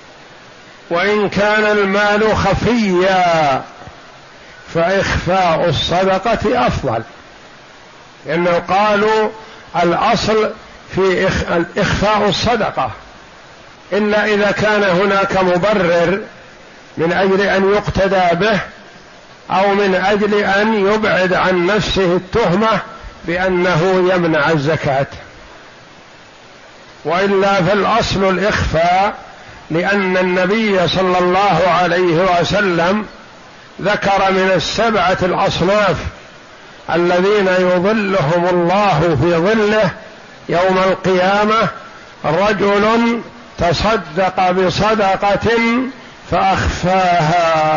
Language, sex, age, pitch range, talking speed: Arabic, male, 50-69, 175-205 Hz, 75 wpm